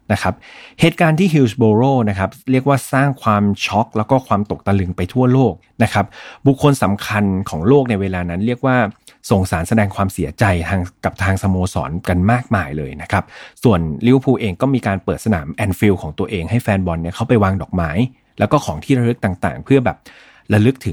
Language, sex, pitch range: Thai, male, 95-120 Hz